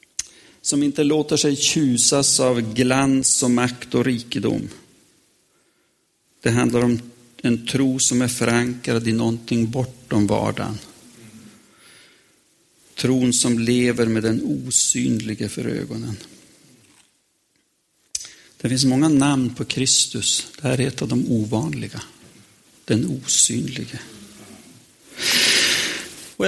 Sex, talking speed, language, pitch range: male, 105 wpm, Swedish, 115-140 Hz